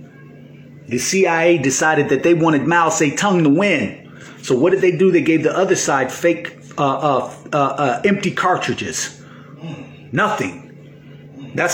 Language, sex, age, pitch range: English, male, 30-49, 140-195 Hz